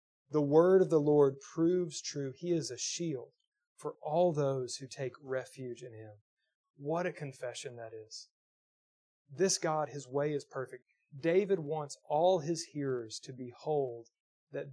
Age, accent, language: 30-49, American, English